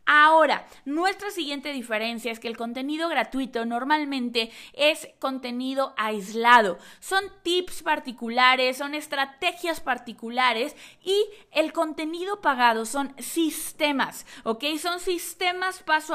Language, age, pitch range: Spanish, 20-39, 245-325 Hz